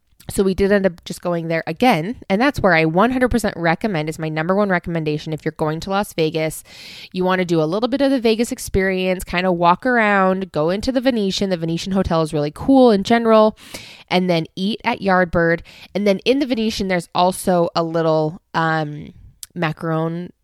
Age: 20-39